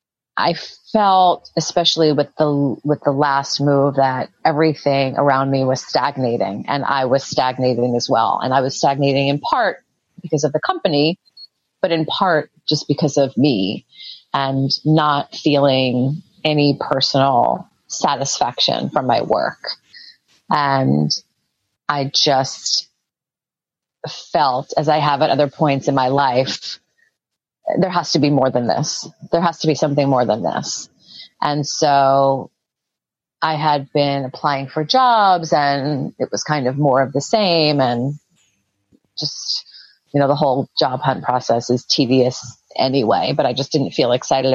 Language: English